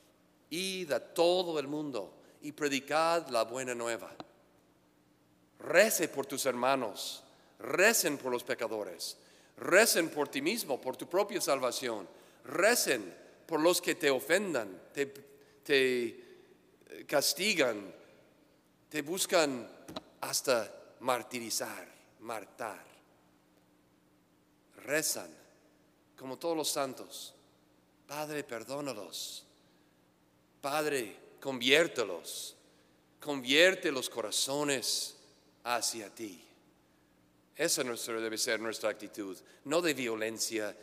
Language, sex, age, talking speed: English, male, 50-69, 90 wpm